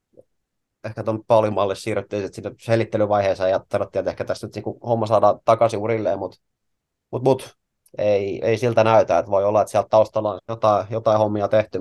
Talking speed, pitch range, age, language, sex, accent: 175 wpm, 100-115 Hz, 30-49, Finnish, male, native